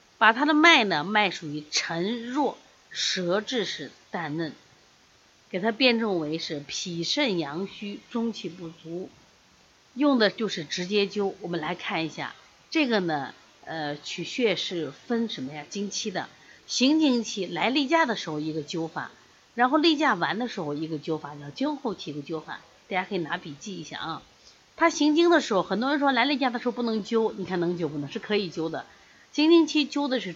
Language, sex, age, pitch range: Chinese, female, 30-49, 165-240 Hz